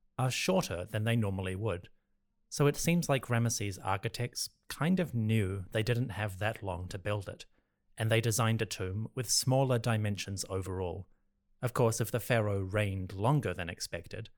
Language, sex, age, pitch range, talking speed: English, male, 30-49, 95-120 Hz, 170 wpm